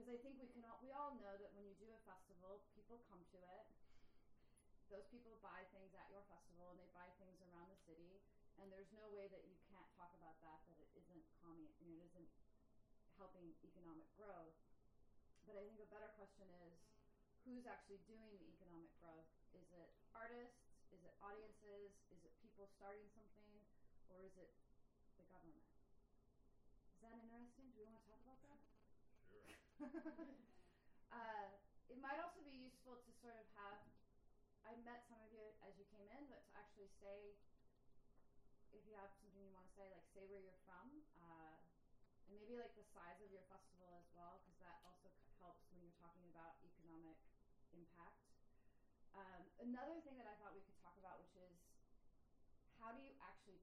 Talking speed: 185 wpm